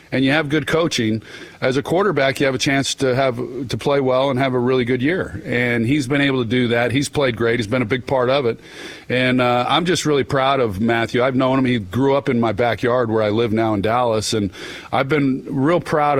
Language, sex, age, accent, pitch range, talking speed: English, male, 40-59, American, 115-145 Hz, 250 wpm